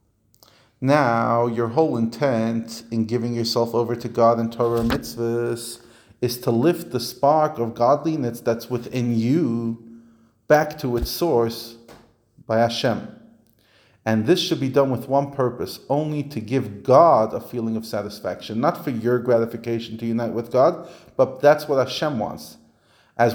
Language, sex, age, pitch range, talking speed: English, male, 40-59, 115-130 Hz, 155 wpm